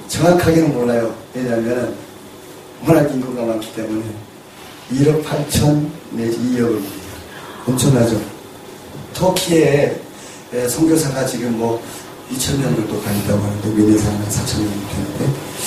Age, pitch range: 30-49, 110-140 Hz